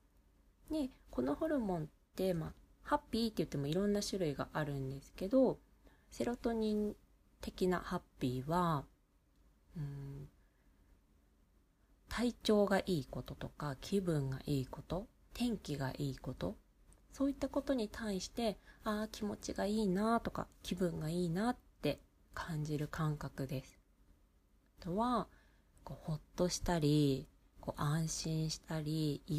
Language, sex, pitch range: Japanese, female, 130-190 Hz